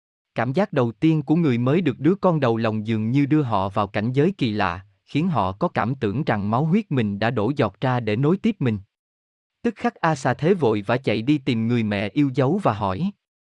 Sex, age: male, 20-39